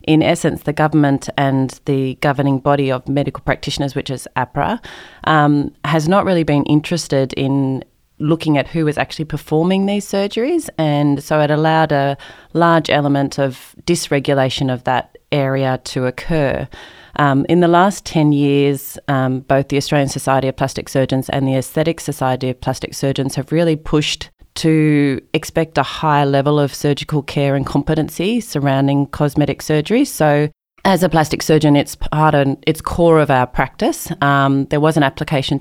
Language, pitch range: English, 135-155 Hz